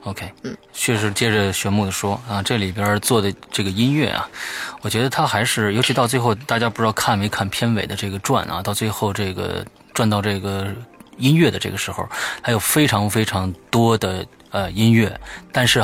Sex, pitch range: male, 100-125 Hz